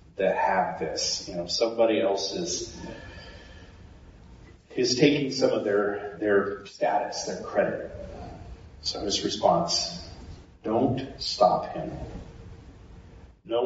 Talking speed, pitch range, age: 100 wpm, 90-130 Hz, 40-59